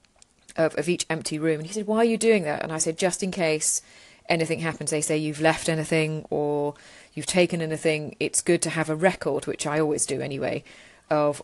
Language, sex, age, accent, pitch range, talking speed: English, female, 30-49, British, 150-180 Hz, 220 wpm